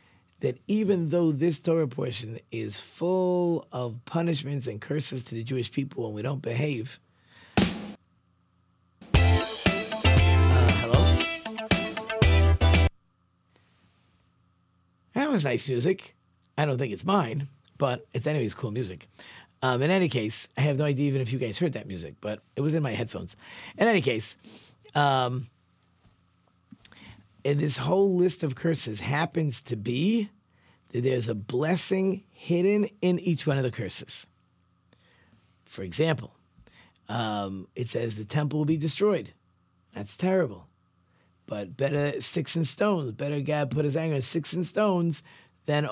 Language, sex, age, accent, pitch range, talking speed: English, male, 40-59, American, 100-160 Hz, 140 wpm